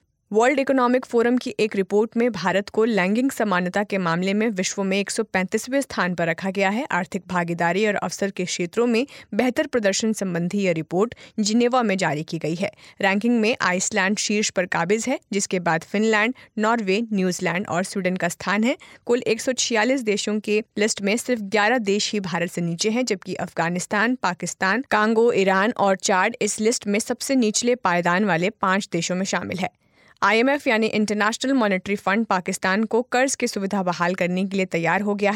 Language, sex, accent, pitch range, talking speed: Hindi, female, native, 185-225 Hz, 185 wpm